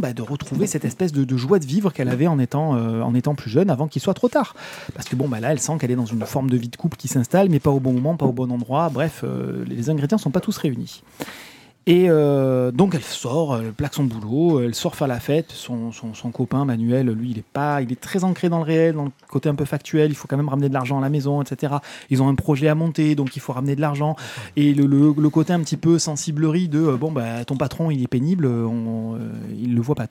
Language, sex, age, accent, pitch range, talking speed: French, male, 30-49, French, 125-160 Hz, 285 wpm